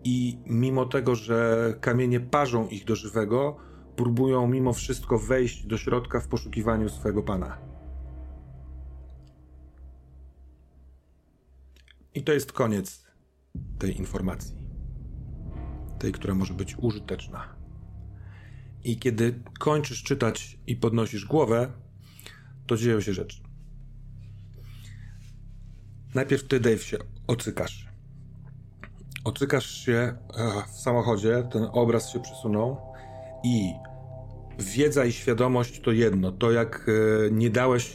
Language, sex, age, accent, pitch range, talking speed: Polish, male, 40-59, native, 100-125 Hz, 100 wpm